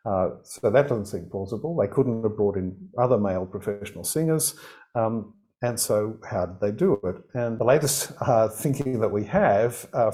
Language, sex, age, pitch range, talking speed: English, male, 50-69, 95-120 Hz, 190 wpm